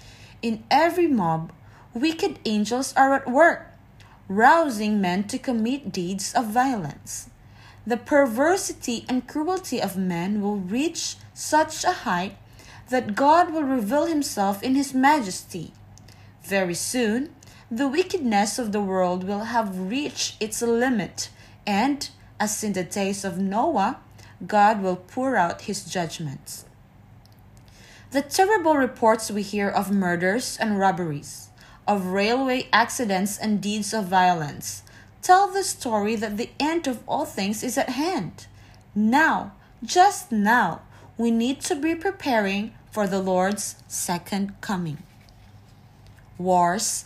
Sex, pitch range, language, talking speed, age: female, 175-260 Hz, English, 130 wpm, 20-39